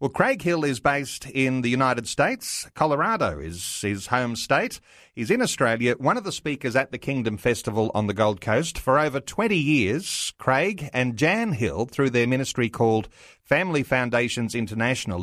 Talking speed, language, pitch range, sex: 175 wpm, English, 110-140 Hz, male